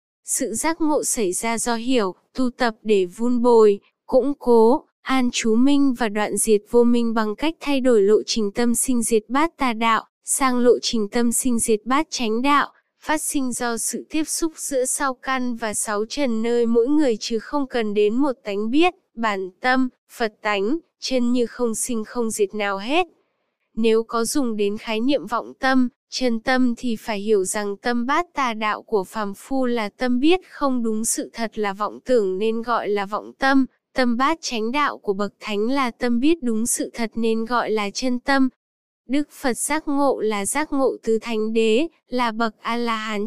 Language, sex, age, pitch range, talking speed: Vietnamese, female, 10-29, 220-270 Hz, 200 wpm